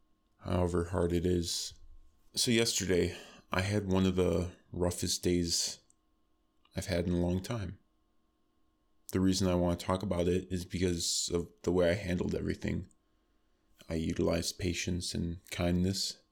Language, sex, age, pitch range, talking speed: English, male, 20-39, 85-95 Hz, 145 wpm